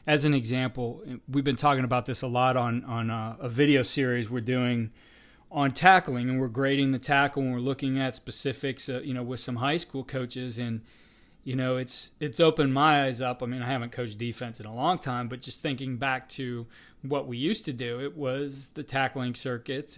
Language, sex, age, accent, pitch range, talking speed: English, male, 30-49, American, 120-135 Hz, 215 wpm